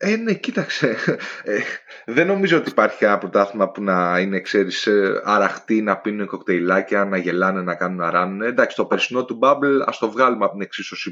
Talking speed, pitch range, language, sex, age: 180 wpm, 105-160 Hz, Greek, male, 20-39